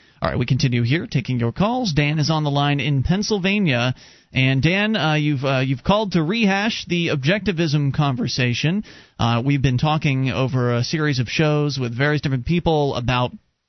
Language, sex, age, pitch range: English, male, 30-49, 125-155 Hz